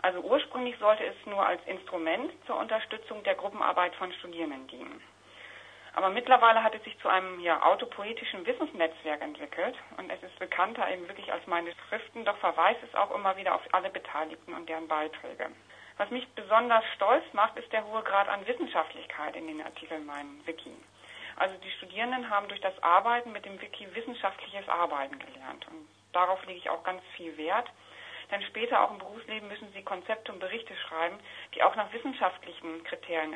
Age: 40-59